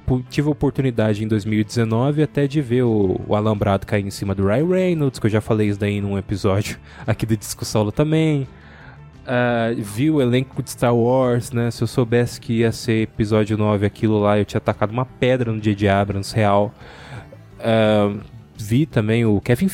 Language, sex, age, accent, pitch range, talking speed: Portuguese, male, 20-39, Brazilian, 105-135 Hz, 180 wpm